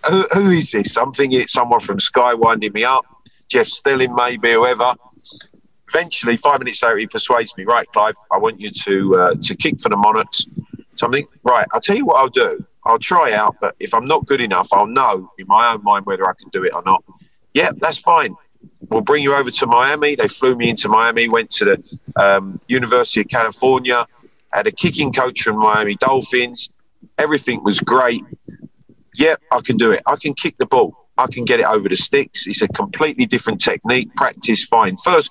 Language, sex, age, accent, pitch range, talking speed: English, male, 40-59, British, 115-180 Hz, 205 wpm